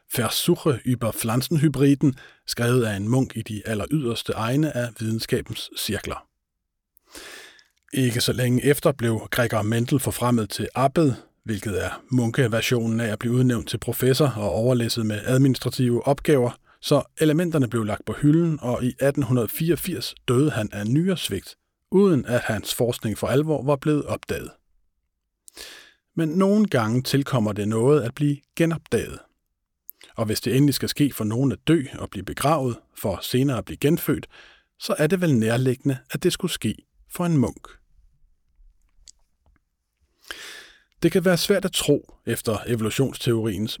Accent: native